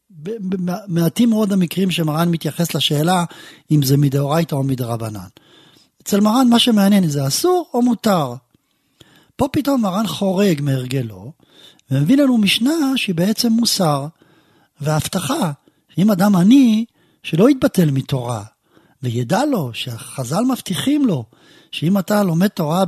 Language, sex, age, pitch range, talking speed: Hebrew, male, 50-69, 135-195 Hz, 120 wpm